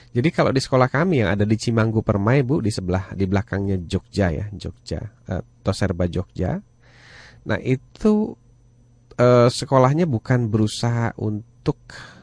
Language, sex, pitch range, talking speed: Indonesian, male, 100-125 Hz, 135 wpm